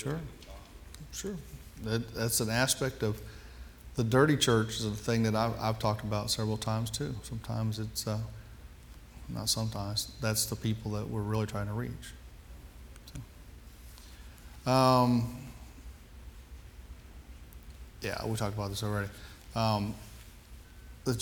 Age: 40-59